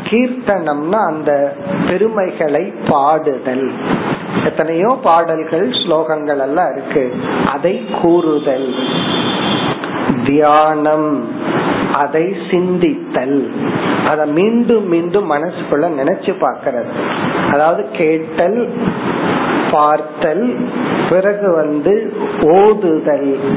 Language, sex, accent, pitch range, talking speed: Tamil, male, native, 150-195 Hz, 50 wpm